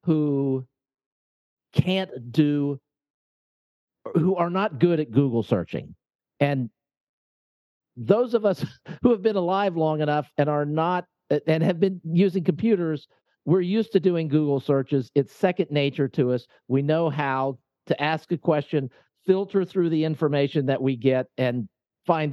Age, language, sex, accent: 50-69, English, male, American